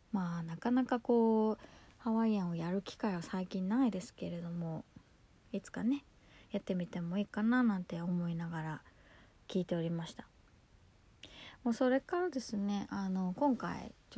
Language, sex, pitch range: Japanese, female, 175-235 Hz